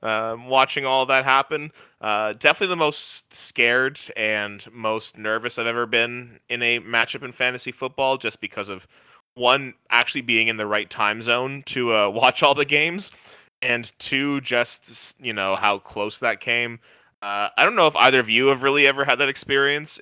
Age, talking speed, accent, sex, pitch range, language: 20-39, 185 wpm, American, male, 105-130 Hz, English